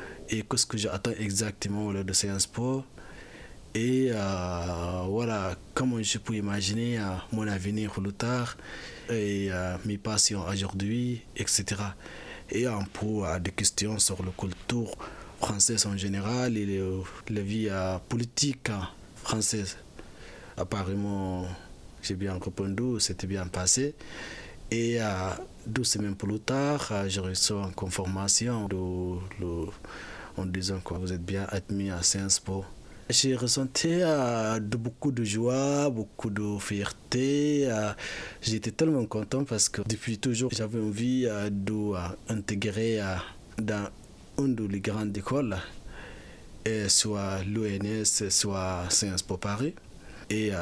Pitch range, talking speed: 95-115 Hz, 130 wpm